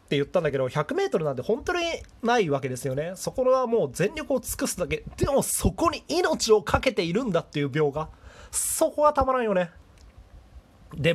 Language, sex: Japanese, male